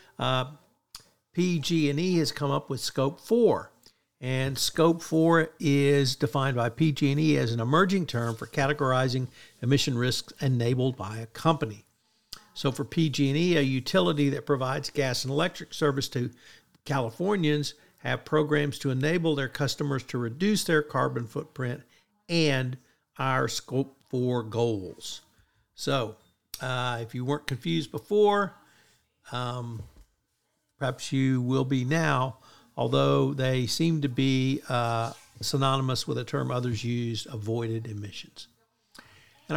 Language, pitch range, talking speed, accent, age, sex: English, 125-155 Hz, 125 wpm, American, 60-79, male